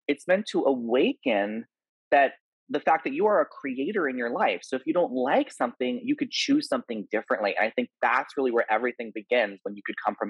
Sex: male